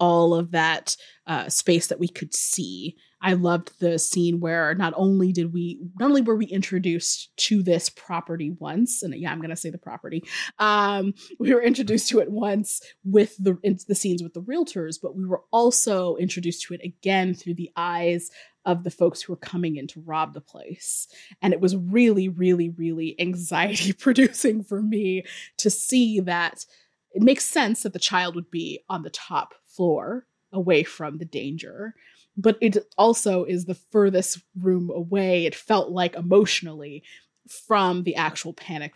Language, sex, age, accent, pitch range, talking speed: English, female, 20-39, American, 170-205 Hz, 180 wpm